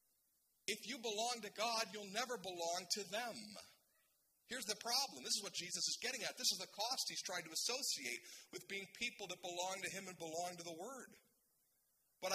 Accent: American